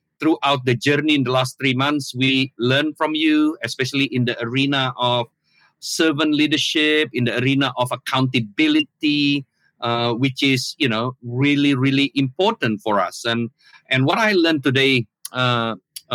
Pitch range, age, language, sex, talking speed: 120-150 Hz, 50-69, English, male, 150 wpm